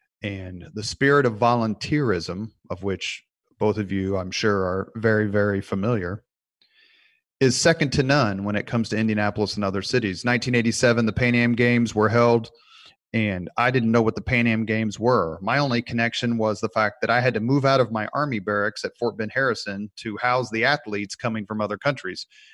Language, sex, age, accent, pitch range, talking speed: English, male, 30-49, American, 105-130 Hz, 195 wpm